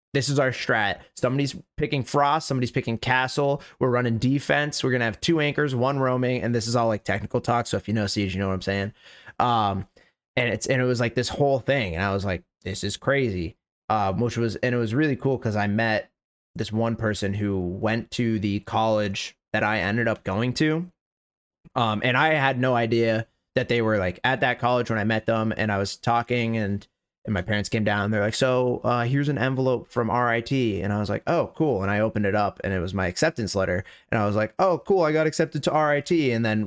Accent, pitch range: American, 100-125 Hz